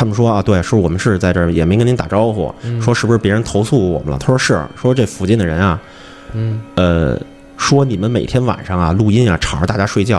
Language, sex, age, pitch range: Chinese, male, 30-49, 100-135 Hz